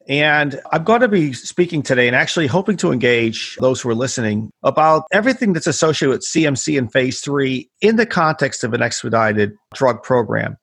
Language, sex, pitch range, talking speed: English, male, 125-165 Hz, 185 wpm